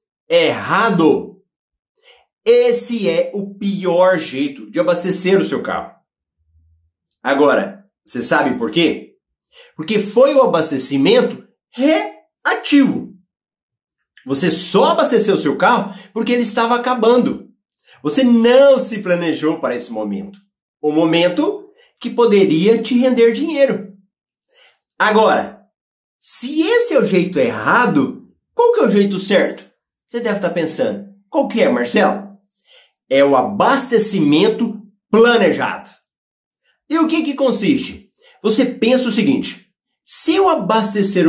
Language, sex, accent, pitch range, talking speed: Portuguese, male, Brazilian, 190-270 Hz, 120 wpm